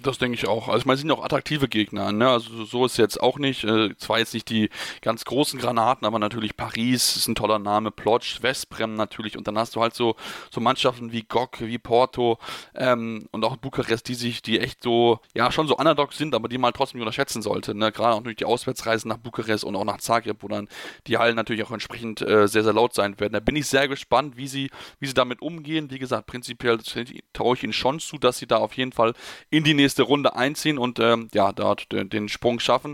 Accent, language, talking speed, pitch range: German, German, 240 wpm, 115-135 Hz